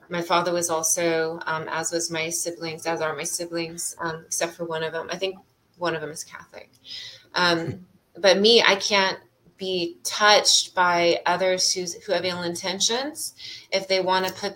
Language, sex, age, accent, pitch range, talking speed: English, female, 20-39, American, 170-190 Hz, 185 wpm